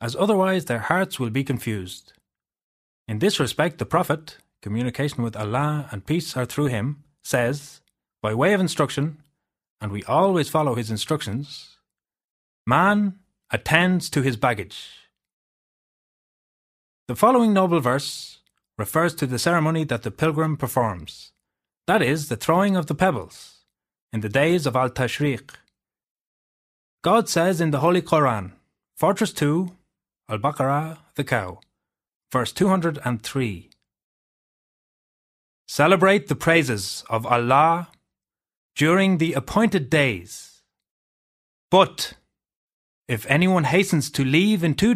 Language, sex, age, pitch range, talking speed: English, male, 30-49, 125-180 Hz, 120 wpm